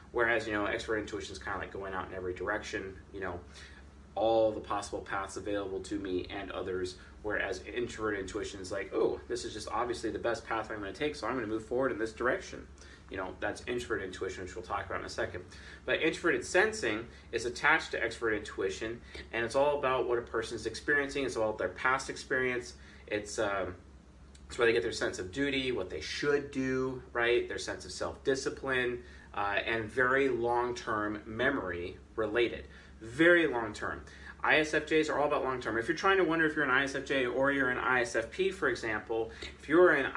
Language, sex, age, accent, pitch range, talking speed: English, male, 30-49, American, 95-140 Hz, 205 wpm